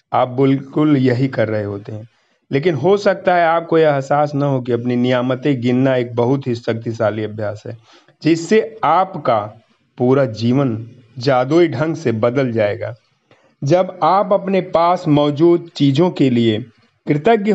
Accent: native